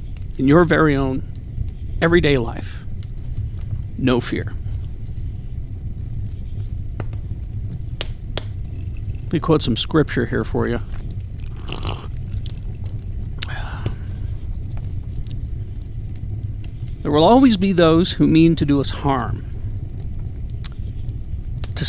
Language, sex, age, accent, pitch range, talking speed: English, male, 50-69, American, 100-125 Hz, 75 wpm